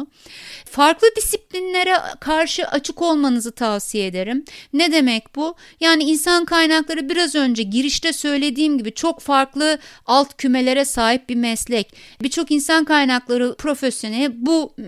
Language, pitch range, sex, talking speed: Turkish, 255-325 Hz, female, 115 wpm